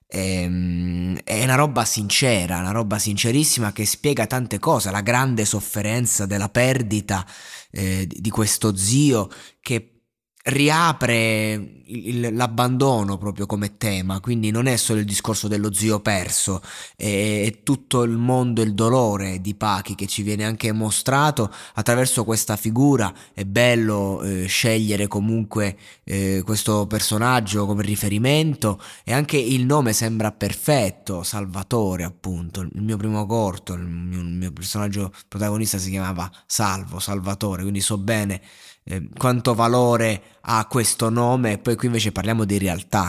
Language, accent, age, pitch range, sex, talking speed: Italian, native, 20-39, 100-120 Hz, male, 135 wpm